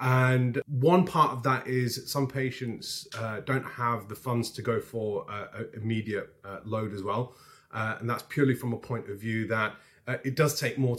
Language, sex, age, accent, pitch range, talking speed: English, male, 30-49, British, 115-145 Hz, 210 wpm